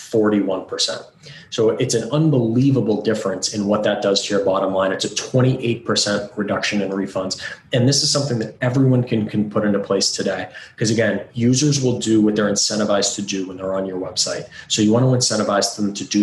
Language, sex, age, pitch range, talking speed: English, male, 30-49, 100-120 Hz, 200 wpm